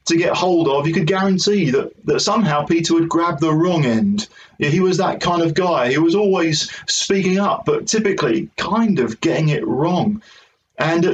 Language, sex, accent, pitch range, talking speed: English, male, British, 150-200 Hz, 190 wpm